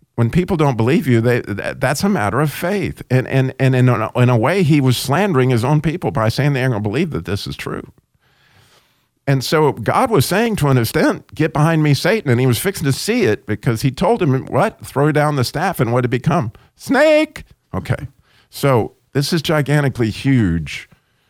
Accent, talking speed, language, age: American, 210 wpm, English, 50-69